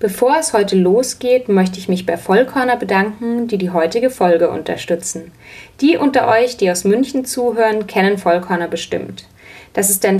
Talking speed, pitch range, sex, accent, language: 165 wpm, 185-235 Hz, female, German, German